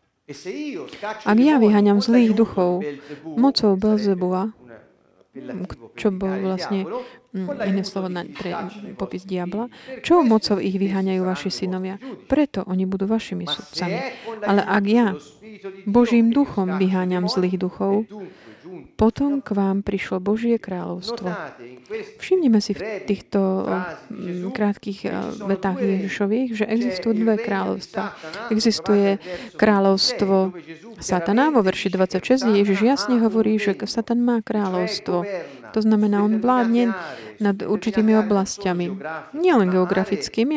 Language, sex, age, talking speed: Slovak, female, 30-49, 110 wpm